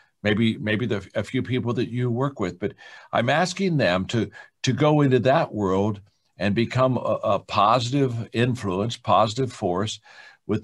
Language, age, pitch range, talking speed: English, 60-79, 105-130 Hz, 165 wpm